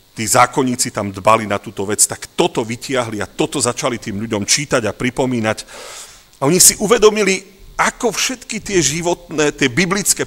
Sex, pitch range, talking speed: male, 115-175 Hz, 165 wpm